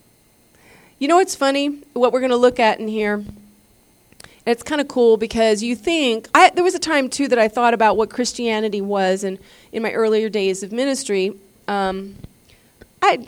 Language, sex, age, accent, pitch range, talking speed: English, female, 30-49, American, 190-250 Hz, 190 wpm